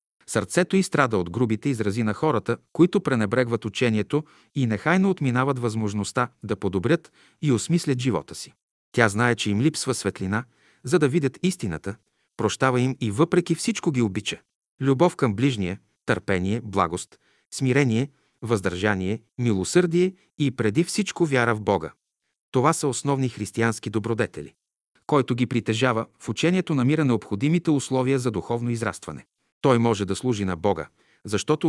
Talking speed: 140 wpm